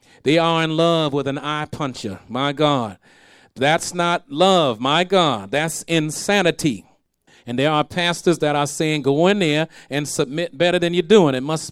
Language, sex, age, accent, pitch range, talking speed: English, male, 40-59, American, 135-170 Hz, 180 wpm